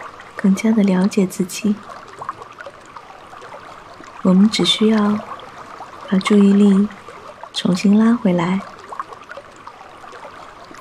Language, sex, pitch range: Chinese, female, 195-225 Hz